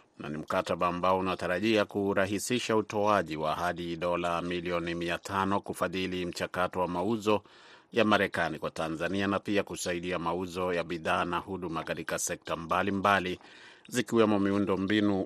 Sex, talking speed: male, 140 wpm